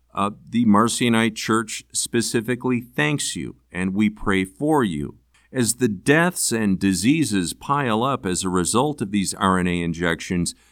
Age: 50-69